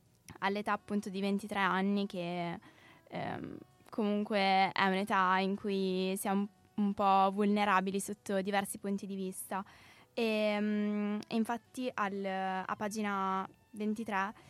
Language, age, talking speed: Italian, 20-39, 110 wpm